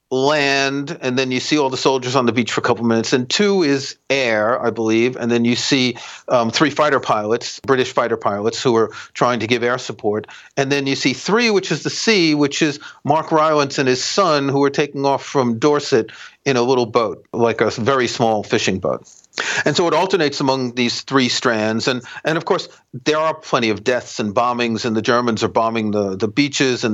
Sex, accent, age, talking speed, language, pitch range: male, American, 40-59, 220 wpm, English, 120-155 Hz